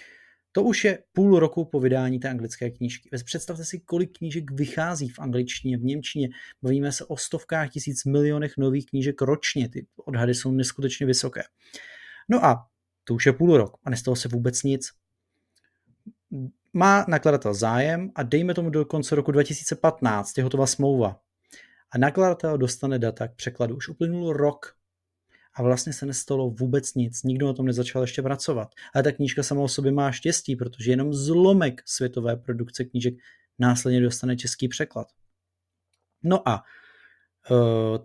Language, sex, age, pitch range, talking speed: Czech, male, 30-49, 120-145 Hz, 155 wpm